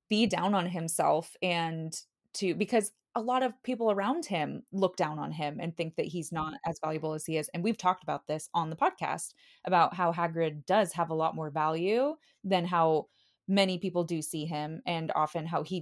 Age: 20-39